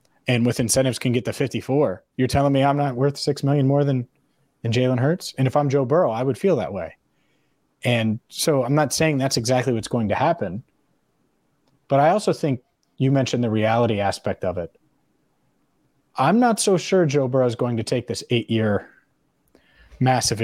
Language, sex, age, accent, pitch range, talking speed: English, male, 30-49, American, 115-140 Hz, 190 wpm